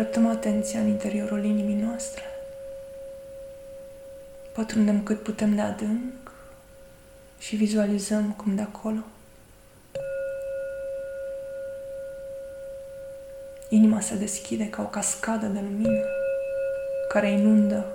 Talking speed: 85 wpm